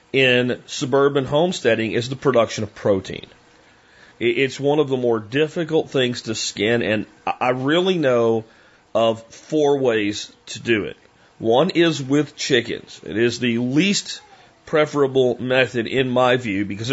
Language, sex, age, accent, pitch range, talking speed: English, male, 40-59, American, 115-135 Hz, 145 wpm